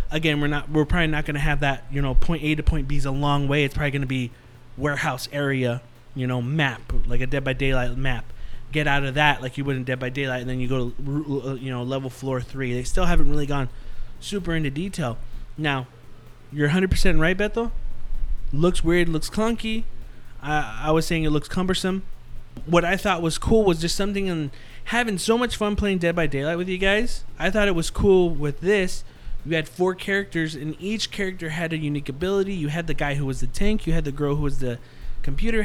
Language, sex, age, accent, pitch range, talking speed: English, male, 20-39, American, 135-190 Hz, 230 wpm